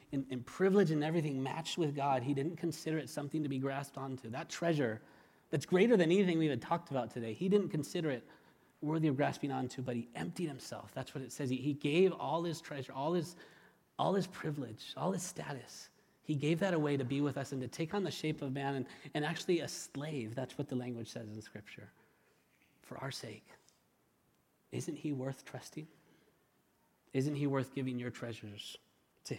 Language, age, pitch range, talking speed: English, 30-49, 125-155 Hz, 200 wpm